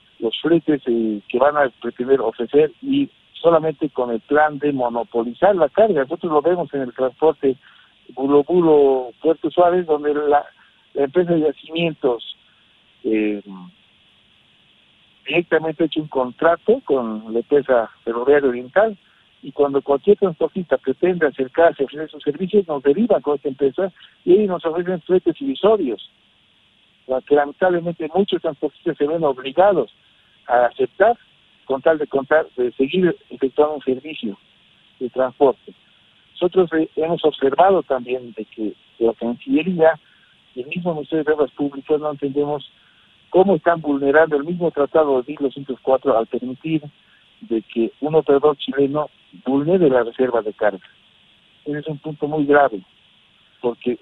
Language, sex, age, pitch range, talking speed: Spanish, male, 60-79, 130-170 Hz, 145 wpm